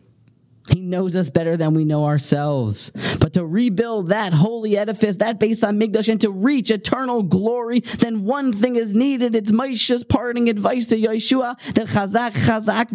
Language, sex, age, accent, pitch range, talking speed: English, male, 30-49, American, 135-230 Hz, 160 wpm